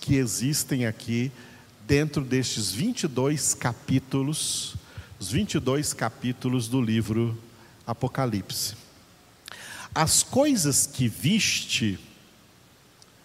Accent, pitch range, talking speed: Brazilian, 120-155 Hz, 75 wpm